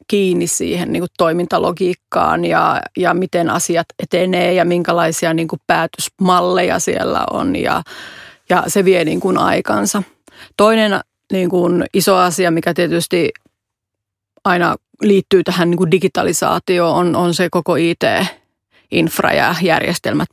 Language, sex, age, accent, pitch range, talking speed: Finnish, female, 30-49, native, 175-205 Hz, 135 wpm